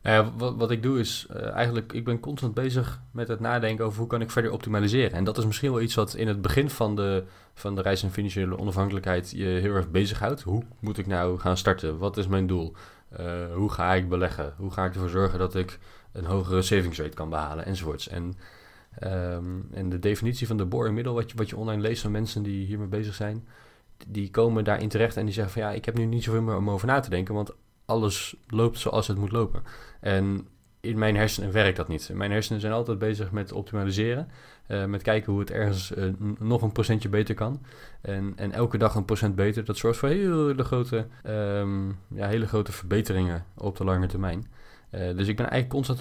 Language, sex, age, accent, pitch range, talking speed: Dutch, male, 20-39, Dutch, 95-110 Hz, 220 wpm